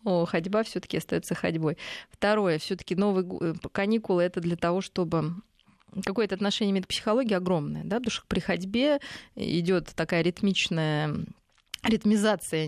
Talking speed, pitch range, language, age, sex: 120 wpm, 165-195 Hz, Russian, 20-39, female